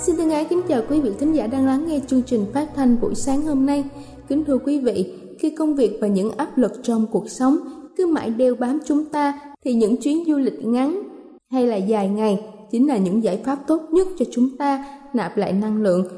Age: 20-39